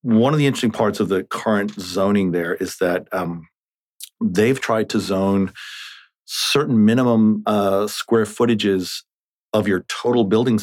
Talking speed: 145 wpm